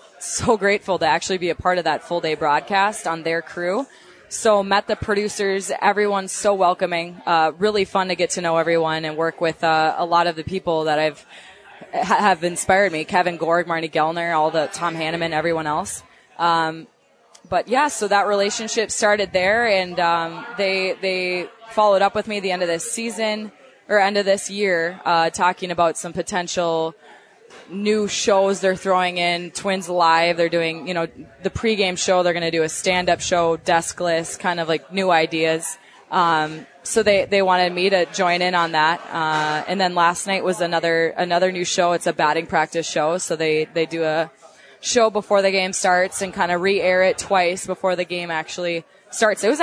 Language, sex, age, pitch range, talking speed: English, female, 20-39, 165-195 Hz, 200 wpm